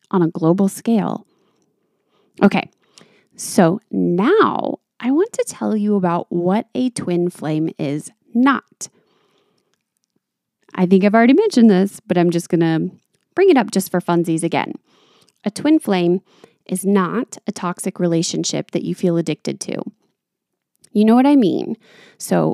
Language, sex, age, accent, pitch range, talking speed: English, female, 20-39, American, 180-225 Hz, 150 wpm